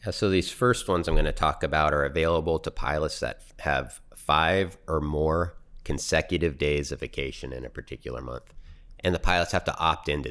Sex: male